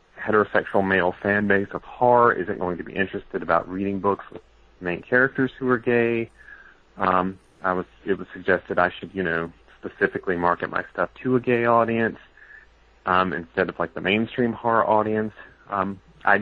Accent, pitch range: American, 95-115 Hz